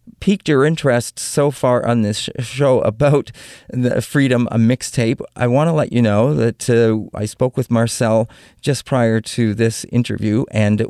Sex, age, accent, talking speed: male, 40-59, American, 170 wpm